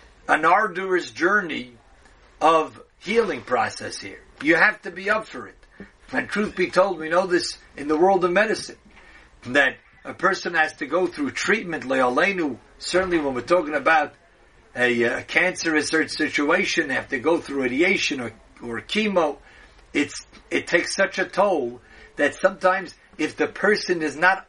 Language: English